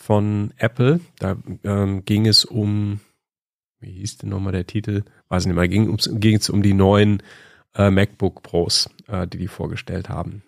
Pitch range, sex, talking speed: 95-115 Hz, male, 170 wpm